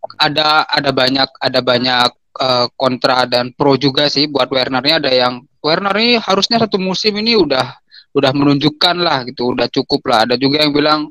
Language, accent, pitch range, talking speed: Indonesian, native, 135-180 Hz, 180 wpm